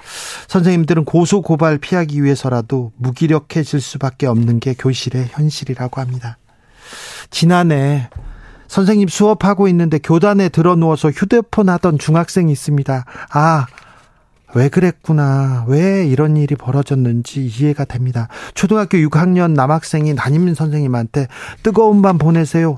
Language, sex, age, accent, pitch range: Korean, male, 40-59, native, 135-185 Hz